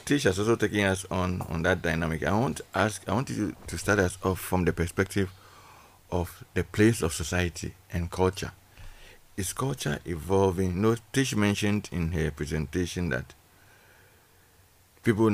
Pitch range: 85-105 Hz